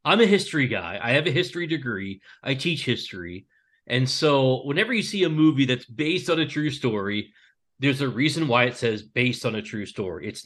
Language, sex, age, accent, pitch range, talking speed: English, male, 30-49, American, 110-135 Hz, 210 wpm